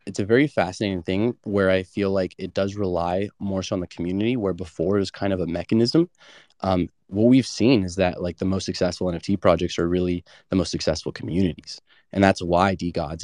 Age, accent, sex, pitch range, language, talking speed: 20-39, American, male, 90-100 Hz, English, 215 wpm